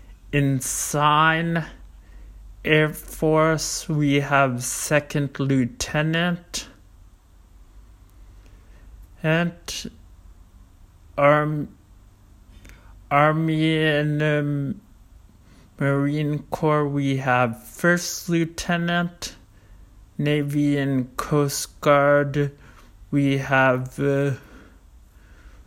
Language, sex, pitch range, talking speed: English, male, 95-150 Hz, 60 wpm